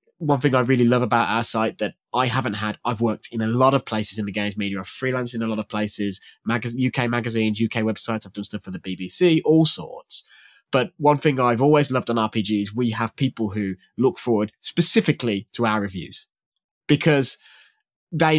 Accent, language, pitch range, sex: British, English, 110-145 Hz, male